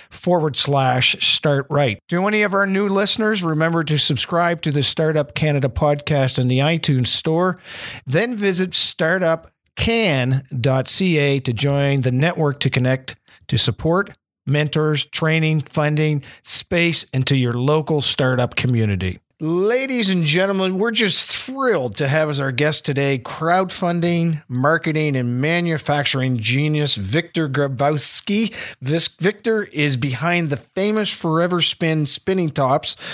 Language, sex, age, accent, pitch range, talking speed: English, male, 50-69, American, 130-165 Hz, 130 wpm